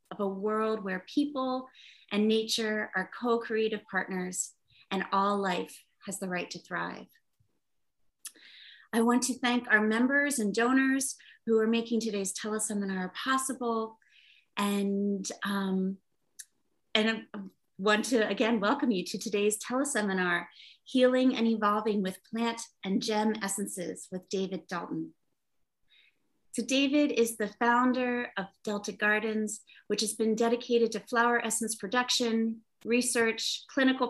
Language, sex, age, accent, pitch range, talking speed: English, female, 30-49, American, 200-235 Hz, 130 wpm